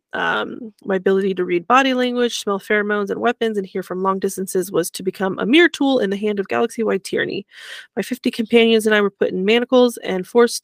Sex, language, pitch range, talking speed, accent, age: female, English, 190-235 Hz, 220 wpm, American, 20-39